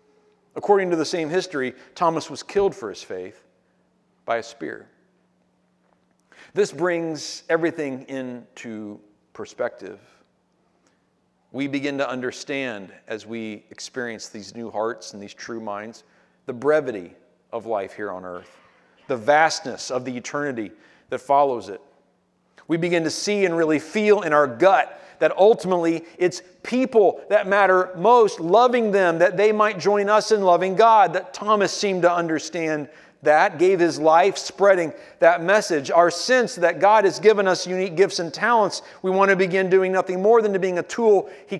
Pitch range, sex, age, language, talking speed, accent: 140-195 Hz, male, 40-59, English, 160 wpm, American